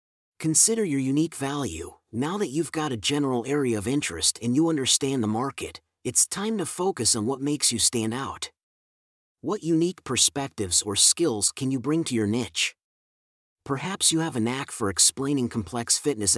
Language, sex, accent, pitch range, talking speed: English, male, American, 120-155 Hz, 175 wpm